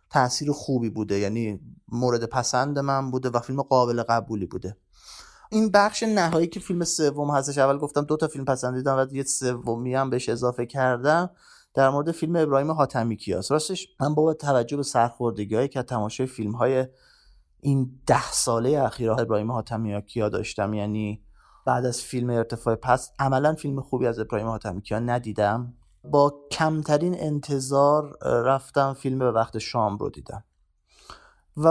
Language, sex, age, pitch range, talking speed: Persian, male, 30-49, 120-155 Hz, 155 wpm